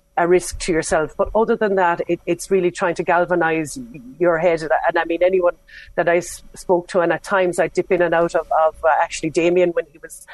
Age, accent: 40-59, Irish